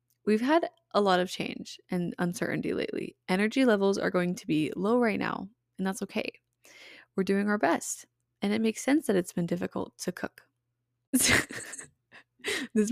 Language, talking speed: English, 165 wpm